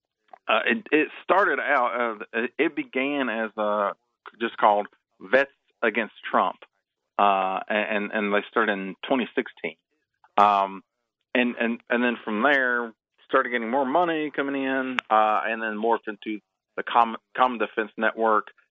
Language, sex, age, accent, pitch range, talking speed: English, male, 40-59, American, 105-125 Hz, 150 wpm